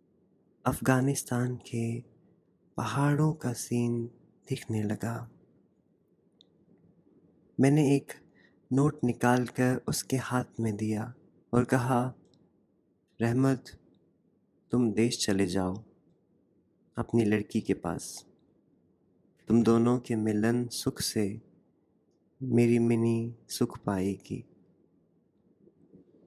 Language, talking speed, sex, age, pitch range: Hindi, 85 wpm, male, 30-49, 115-130 Hz